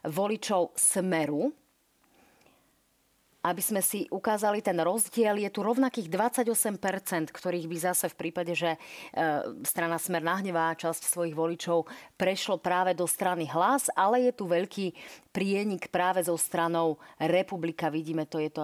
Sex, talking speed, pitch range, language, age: female, 135 wpm, 155-190 Hz, Slovak, 30-49